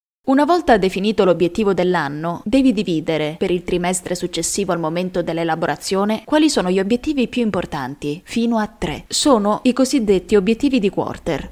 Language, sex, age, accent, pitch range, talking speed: Italian, female, 20-39, native, 175-230 Hz, 150 wpm